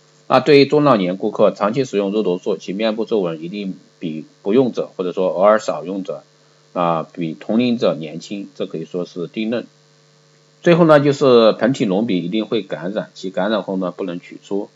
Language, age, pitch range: Chinese, 50-69, 90-115 Hz